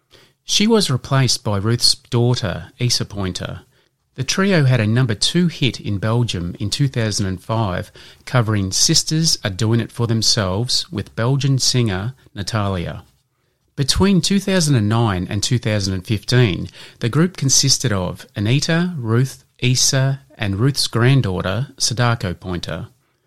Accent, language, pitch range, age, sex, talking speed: Australian, English, 105-135 Hz, 30-49, male, 120 wpm